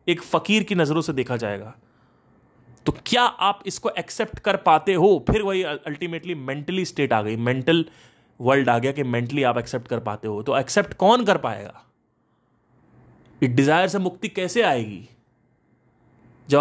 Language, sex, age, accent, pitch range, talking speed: Hindi, male, 30-49, native, 120-180 Hz, 165 wpm